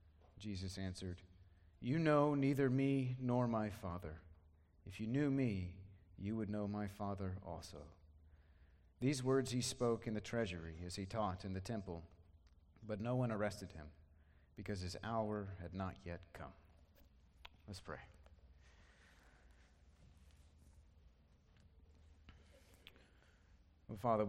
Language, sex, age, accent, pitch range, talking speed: English, male, 40-59, American, 80-110 Hz, 115 wpm